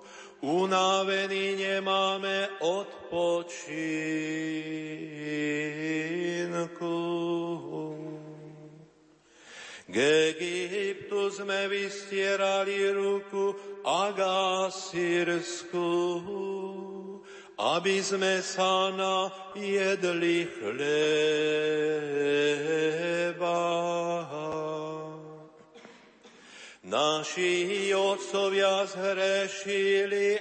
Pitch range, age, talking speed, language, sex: 155-195 Hz, 50-69, 35 wpm, Slovak, male